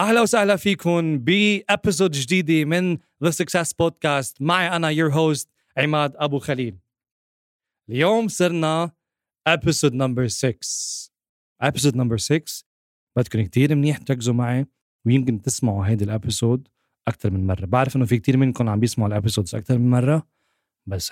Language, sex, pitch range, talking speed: Arabic, male, 120-155 Hz, 135 wpm